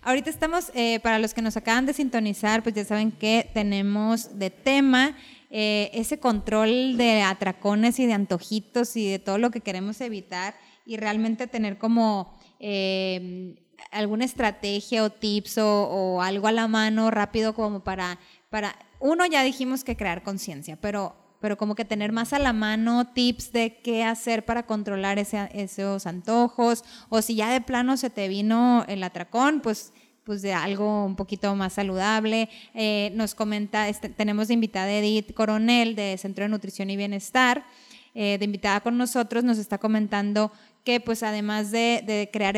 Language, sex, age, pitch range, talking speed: Spanish, female, 20-39, 200-235 Hz, 170 wpm